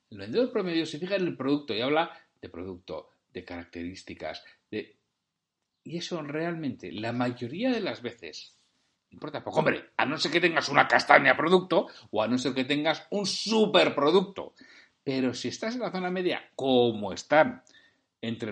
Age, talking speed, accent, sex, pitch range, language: 60-79, 175 wpm, Spanish, male, 115-155 Hz, Spanish